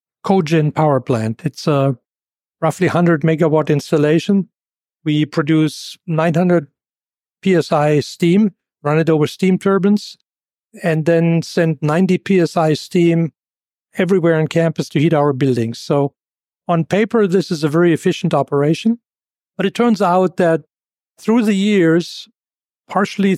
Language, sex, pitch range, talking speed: English, male, 150-185 Hz, 130 wpm